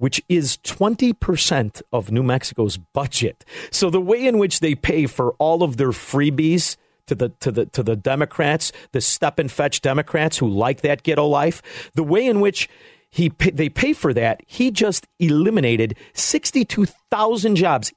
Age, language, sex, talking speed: 50-69, English, male, 165 wpm